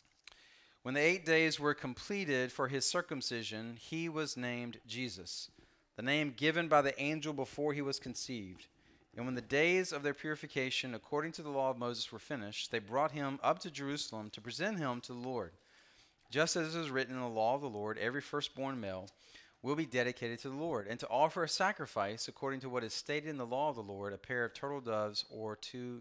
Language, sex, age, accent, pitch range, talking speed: English, male, 40-59, American, 120-155 Hz, 215 wpm